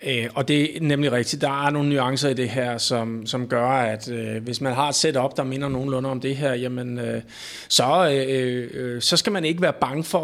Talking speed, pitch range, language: 240 wpm, 120-145 Hz, Danish